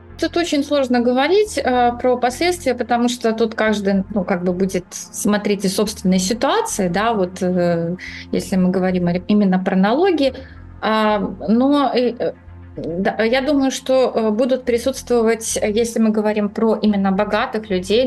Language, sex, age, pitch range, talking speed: Russian, female, 20-39, 180-230 Hz, 130 wpm